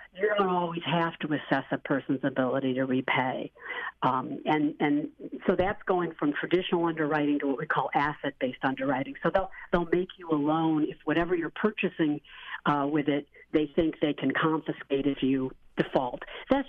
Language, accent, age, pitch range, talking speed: English, American, 60-79, 145-180 Hz, 175 wpm